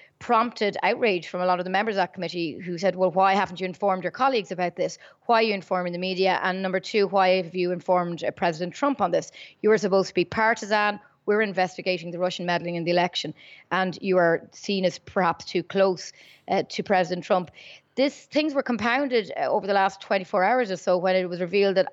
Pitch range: 180-200 Hz